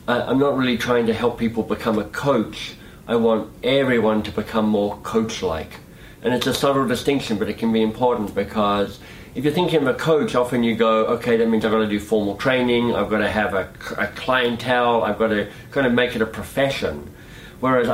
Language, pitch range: English, 110-135 Hz